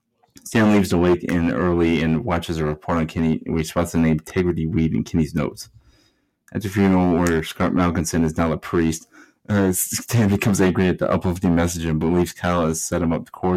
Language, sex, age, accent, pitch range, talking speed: English, male, 30-49, American, 85-95 Hz, 210 wpm